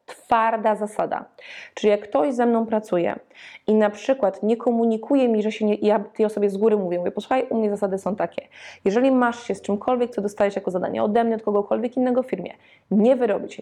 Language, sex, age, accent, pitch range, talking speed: Polish, female, 20-39, native, 195-230 Hz, 205 wpm